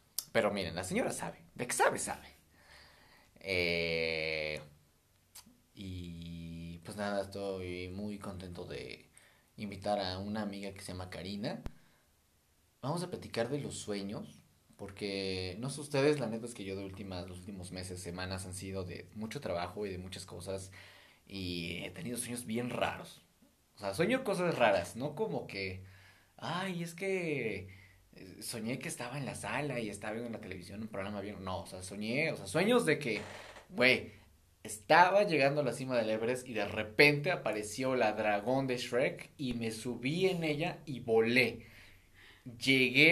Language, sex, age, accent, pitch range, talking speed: Spanish, male, 30-49, Mexican, 95-135 Hz, 165 wpm